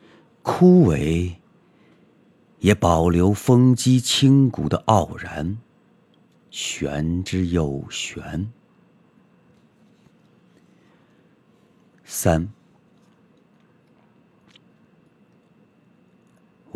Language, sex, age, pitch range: Chinese, male, 50-69, 85-125 Hz